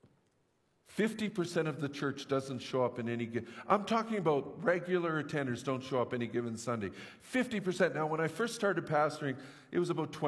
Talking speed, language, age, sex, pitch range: 175 wpm, English, 50-69, male, 130-175 Hz